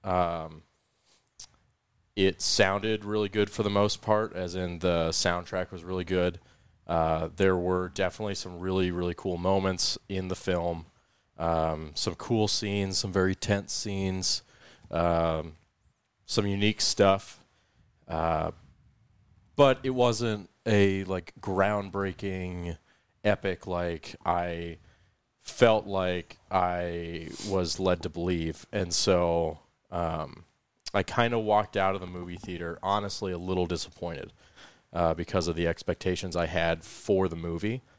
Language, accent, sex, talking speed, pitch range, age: English, American, male, 130 wpm, 90-105 Hz, 30-49